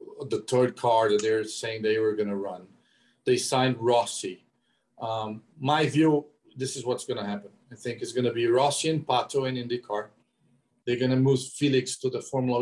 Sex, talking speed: male, 205 wpm